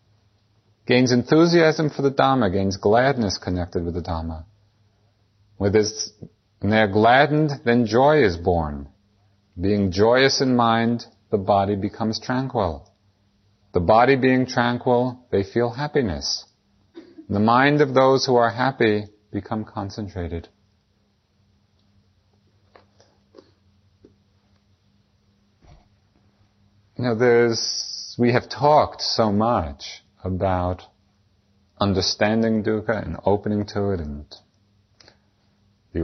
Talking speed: 100 wpm